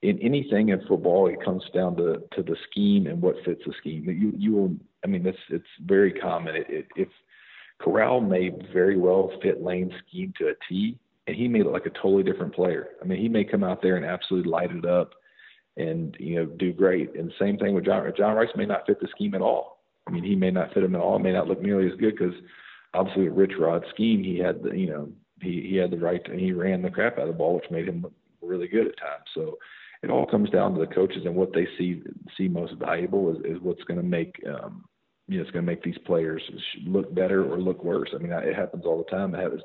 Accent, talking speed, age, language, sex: American, 255 wpm, 40-59, English, male